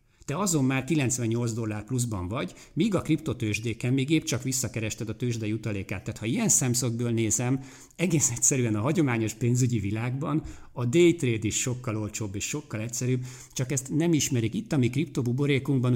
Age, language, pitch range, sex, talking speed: 50-69, Hungarian, 110-130 Hz, male, 165 wpm